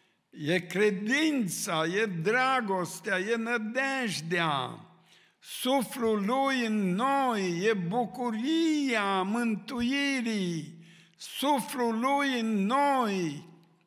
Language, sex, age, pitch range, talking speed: Romanian, male, 60-79, 190-235 Hz, 75 wpm